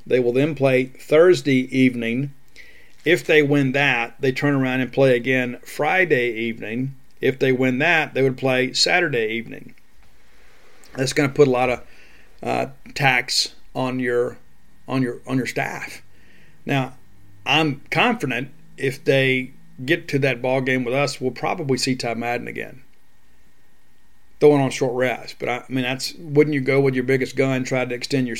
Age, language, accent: 40-59, English, American